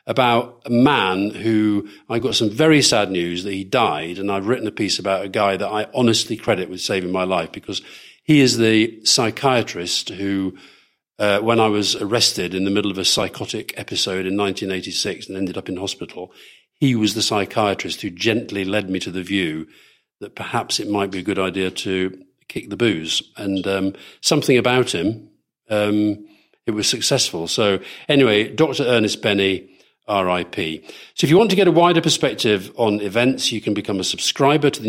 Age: 50-69